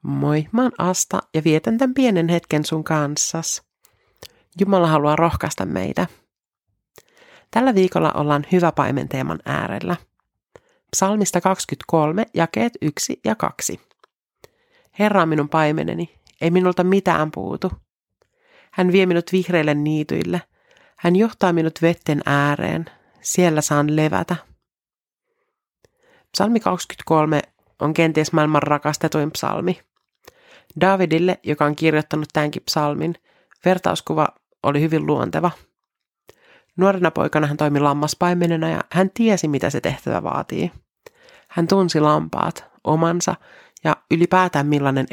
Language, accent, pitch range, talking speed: Finnish, native, 150-190 Hz, 110 wpm